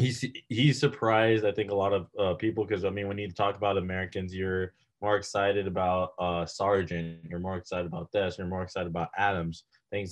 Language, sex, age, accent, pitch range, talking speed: English, male, 20-39, American, 90-115 Hz, 210 wpm